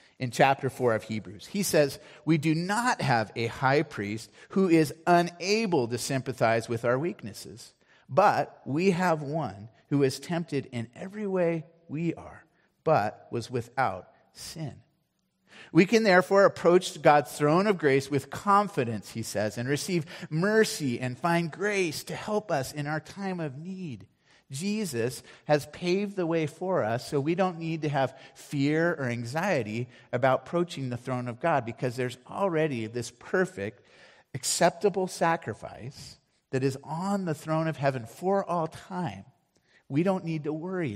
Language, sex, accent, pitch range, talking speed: English, male, American, 120-175 Hz, 160 wpm